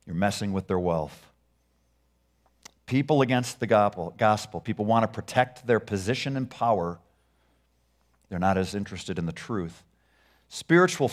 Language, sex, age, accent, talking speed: English, male, 50-69, American, 135 wpm